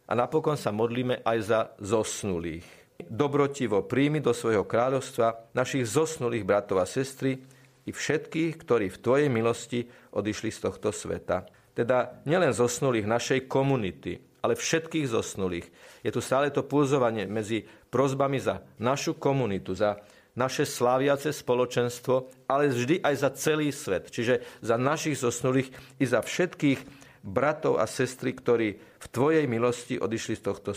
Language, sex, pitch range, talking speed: Slovak, male, 110-140 Hz, 140 wpm